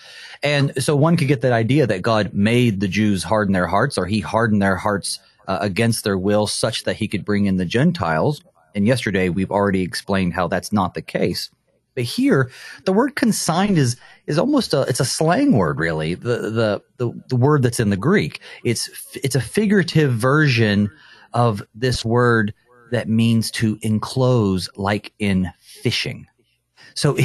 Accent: American